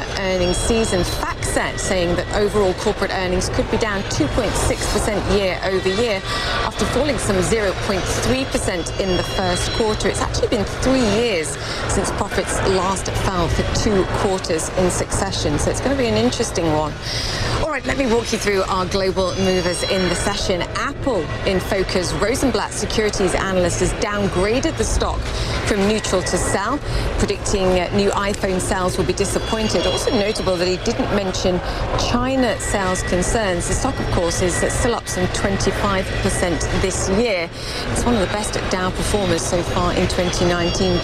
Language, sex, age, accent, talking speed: English, female, 30-49, British, 160 wpm